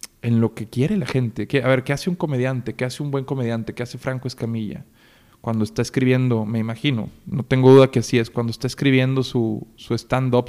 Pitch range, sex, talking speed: 120-140 Hz, male, 215 wpm